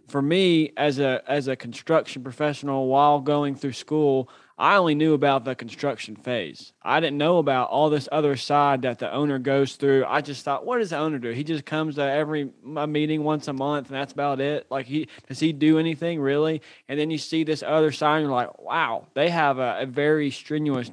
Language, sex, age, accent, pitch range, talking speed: English, male, 20-39, American, 135-150 Hz, 220 wpm